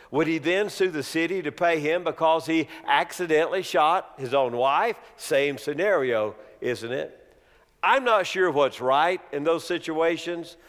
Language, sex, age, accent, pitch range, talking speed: English, male, 50-69, American, 155-225 Hz, 155 wpm